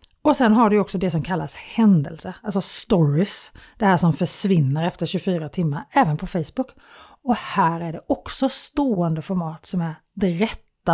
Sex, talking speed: female, 175 wpm